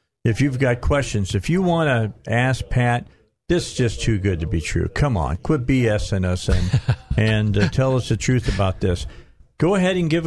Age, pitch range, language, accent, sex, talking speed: 50-69, 105-140 Hz, English, American, male, 215 wpm